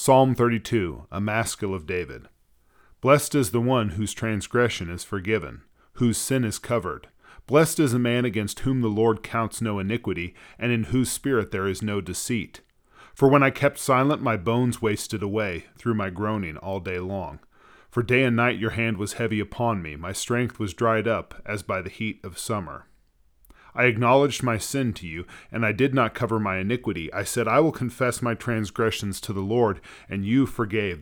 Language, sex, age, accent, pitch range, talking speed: English, male, 40-59, American, 100-125 Hz, 190 wpm